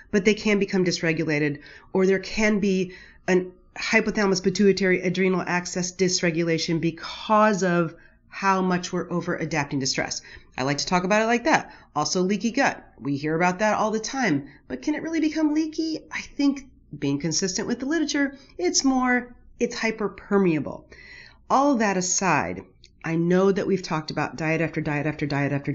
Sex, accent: female, American